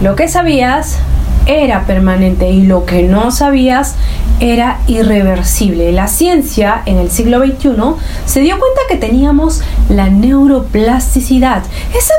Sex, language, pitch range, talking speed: female, Spanish, 205-285 Hz, 130 wpm